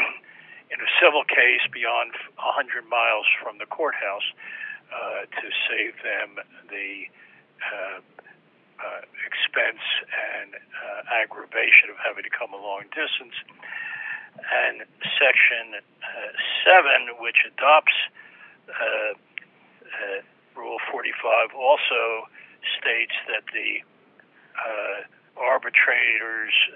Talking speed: 100 wpm